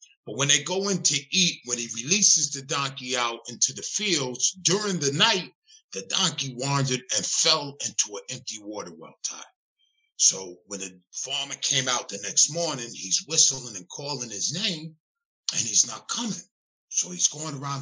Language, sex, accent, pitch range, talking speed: English, male, American, 120-170 Hz, 180 wpm